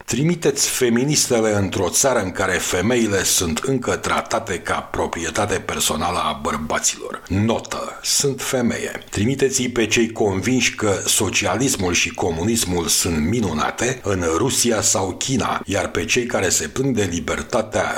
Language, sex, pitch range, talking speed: Romanian, male, 95-125 Hz, 135 wpm